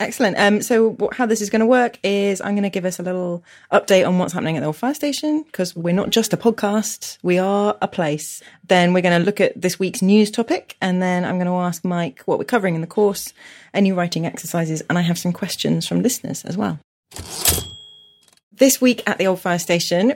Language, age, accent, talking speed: English, 30-49, British, 230 wpm